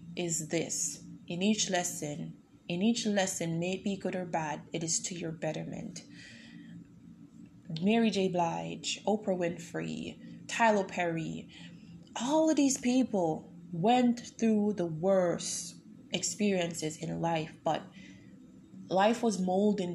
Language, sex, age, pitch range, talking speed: English, female, 20-39, 165-195 Hz, 120 wpm